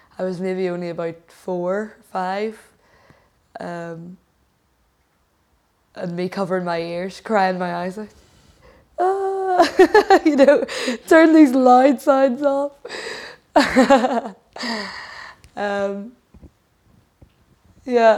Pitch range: 175-200 Hz